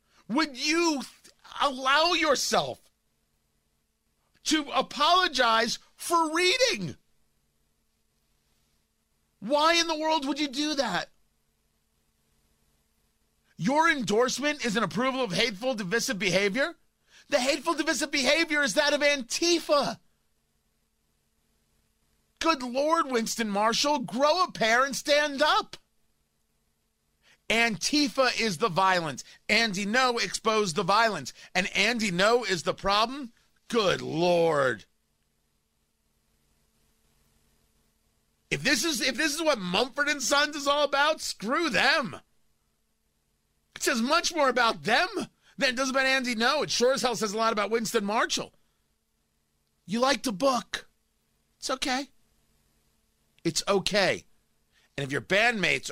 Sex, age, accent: male, 40-59, American